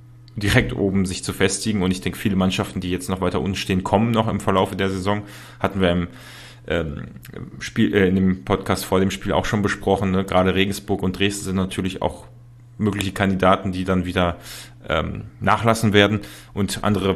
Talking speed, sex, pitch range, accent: 190 wpm, male, 95-105 Hz, German